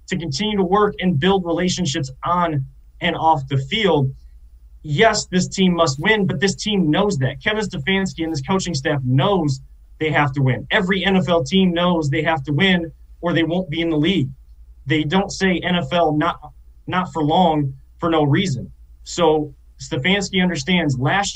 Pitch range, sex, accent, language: 135-180 Hz, male, American, English